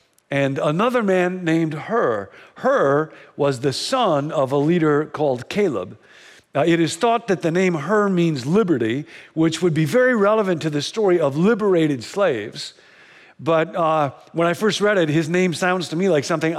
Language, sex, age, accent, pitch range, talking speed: English, male, 50-69, American, 150-200 Hz, 175 wpm